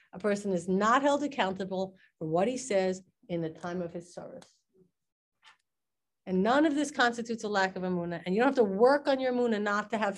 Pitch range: 185-255 Hz